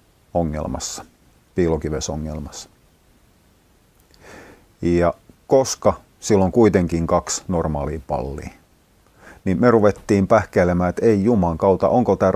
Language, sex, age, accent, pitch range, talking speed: Finnish, male, 40-59, native, 80-100 Hz, 95 wpm